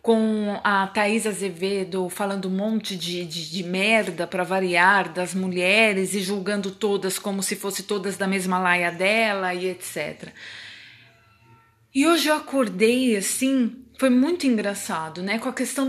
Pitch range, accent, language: 200-265 Hz, Brazilian, Portuguese